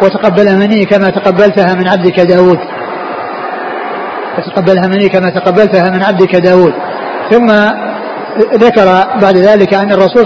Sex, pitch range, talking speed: male, 190-215 Hz, 115 wpm